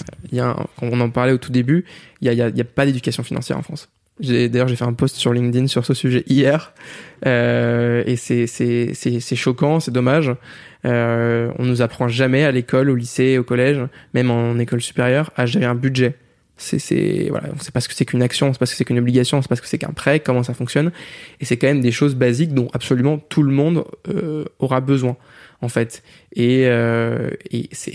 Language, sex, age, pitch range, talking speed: French, male, 20-39, 120-145 Hz, 230 wpm